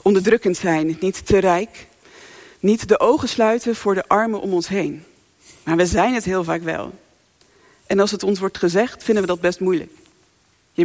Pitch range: 190-265 Hz